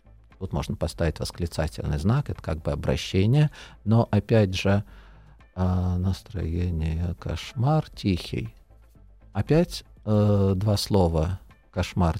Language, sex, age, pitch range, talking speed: Russian, male, 50-69, 85-120 Hz, 105 wpm